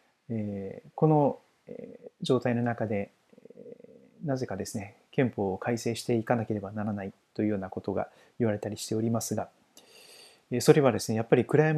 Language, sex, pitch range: Japanese, male, 110-175 Hz